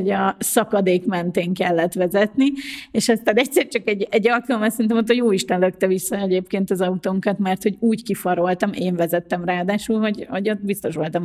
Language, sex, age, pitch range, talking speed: Hungarian, female, 30-49, 185-245 Hz, 185 wpm